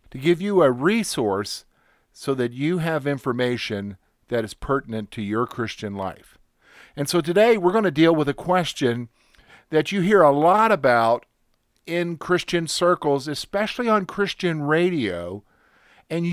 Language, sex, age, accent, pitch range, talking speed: English, male, 50-69, American, 135-185 Hz, 150 wpm